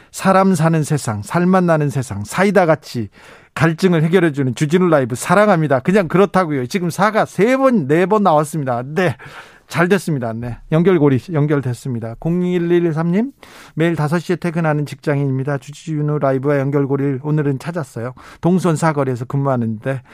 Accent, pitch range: native, 140-185 Hz